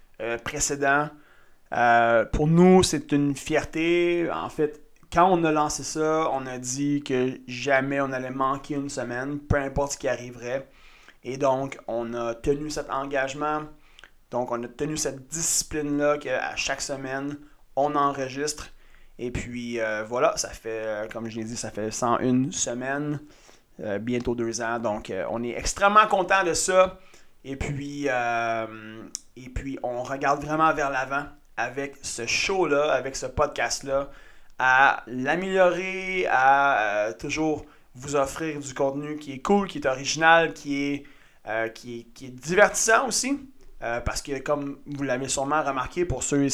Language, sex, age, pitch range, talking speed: French, male, 30-49, 125-150 Hz, 160 wpm